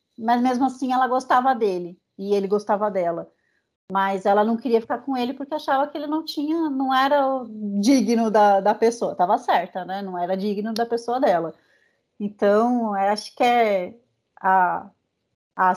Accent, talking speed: Brazilian, 165 wpm